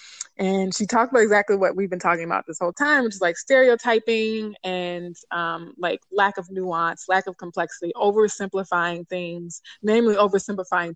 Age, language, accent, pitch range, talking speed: 20-39, English, American, 175-205 Hz, 165 wpm